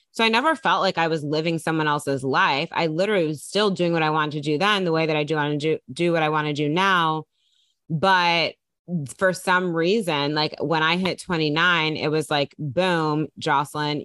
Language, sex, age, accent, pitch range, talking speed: English, female, 20-39, American, 150-180 Hz, 220 wpm